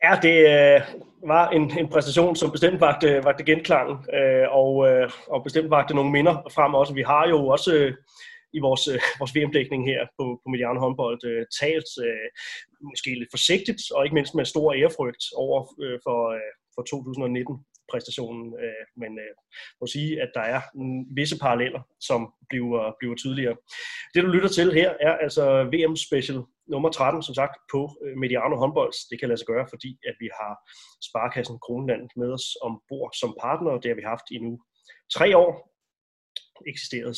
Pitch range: 120-155 Hz